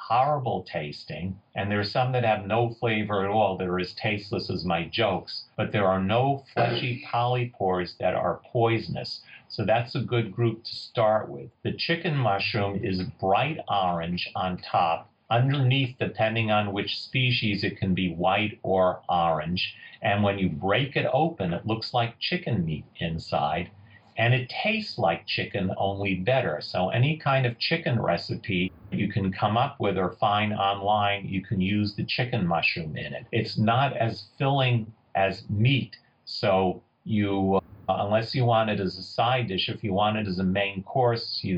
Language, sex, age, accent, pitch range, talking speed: English, male, 50-69, American, 95-120 Hz, 175 wpm